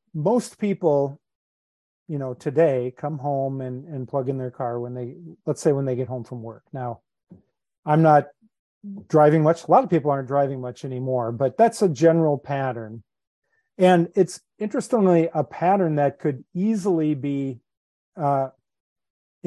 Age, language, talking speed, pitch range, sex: 40-59, English, 155 wpm, 135-170 Hz, male